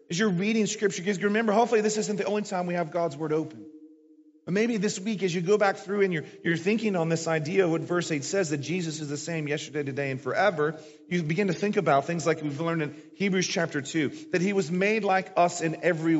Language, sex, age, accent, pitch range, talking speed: English, male, 40-59, American, 165-215 Hz, 255 wpm